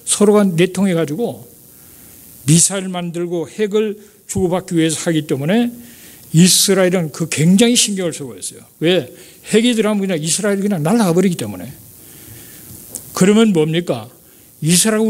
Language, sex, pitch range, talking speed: English, male, 160-210 Hz, 105 wpm